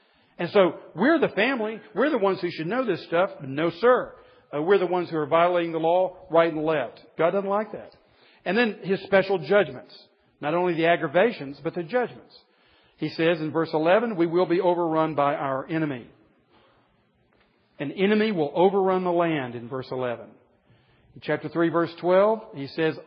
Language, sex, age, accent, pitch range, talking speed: English, male, 50-69, American, 155-195 Hz, 185 wpm